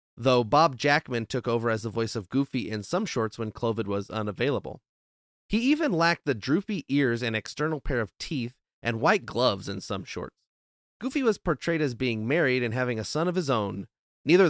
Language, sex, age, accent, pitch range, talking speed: English, male, 30-49, American, 115-165 Hz, 200 wpm